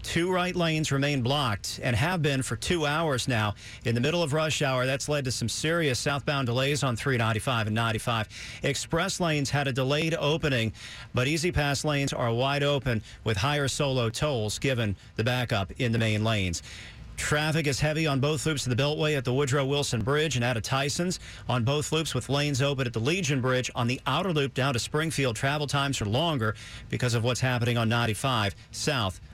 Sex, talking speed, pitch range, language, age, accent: male, 205 wpm, 115-150 Hz, English, 50-69, American